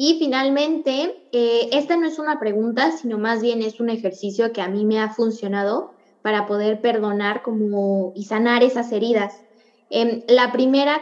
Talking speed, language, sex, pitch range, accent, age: 170 wpm, Spanish, female, 215-260 Hz, Mexican, 20-39